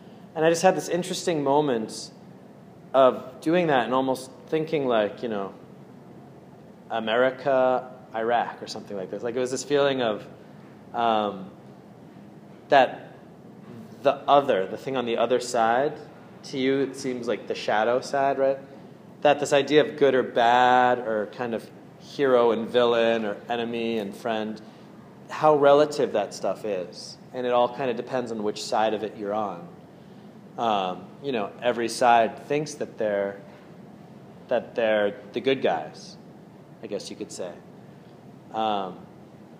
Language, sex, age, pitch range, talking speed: English, male, 30-49, 110-140 Hz, 155 wpm